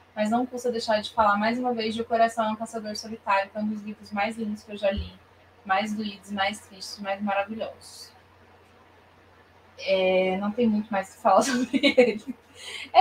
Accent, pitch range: Brazilian, 185-245 Hz